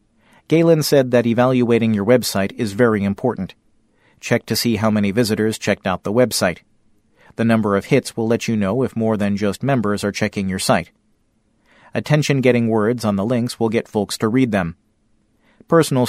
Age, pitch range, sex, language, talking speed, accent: 40-59, 105-125 Hz, male, English, 180 wpm, American